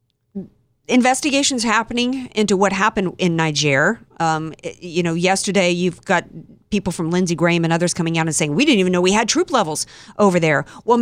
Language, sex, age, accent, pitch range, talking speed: English, female, 50-69, American, 165-215 Hz, 185 wpm